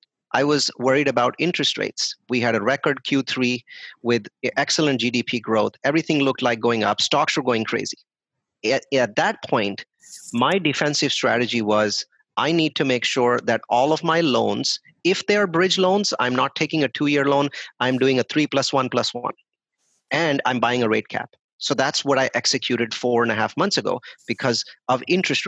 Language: English